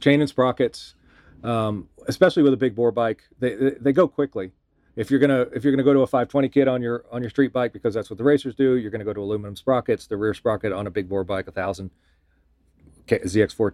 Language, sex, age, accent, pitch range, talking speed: English, male, 40-59, American, 110-135 Hz, 240 wpm